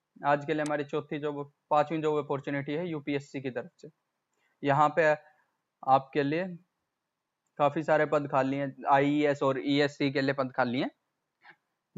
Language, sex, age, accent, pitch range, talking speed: Hindi, male, 20-39, native, 140-155 Hz, 150 wpm